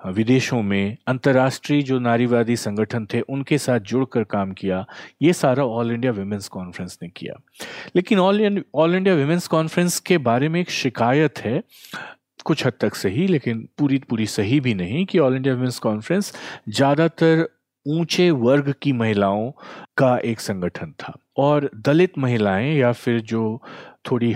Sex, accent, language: male, native, Hindi